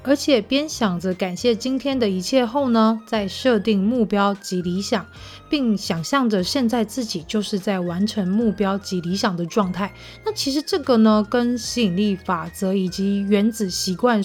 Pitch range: 190-240 Hz